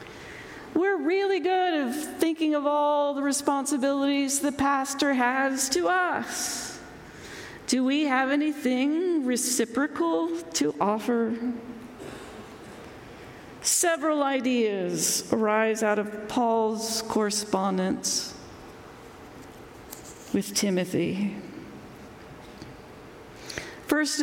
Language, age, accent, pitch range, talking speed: English, 40-59, American, 225-295 Hz, 75 wpm